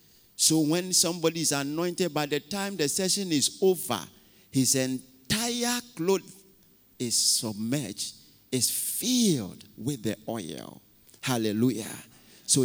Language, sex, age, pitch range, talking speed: English, male, 50-69, 120-185 Hz, 115 wpm